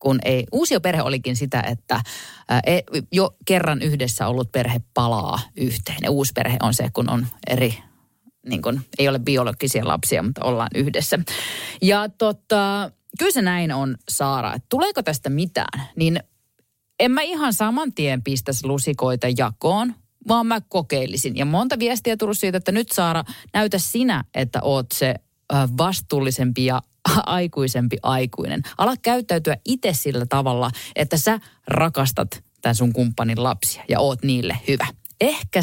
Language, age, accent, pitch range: Finnish, 30-49, native, 125-185 Hz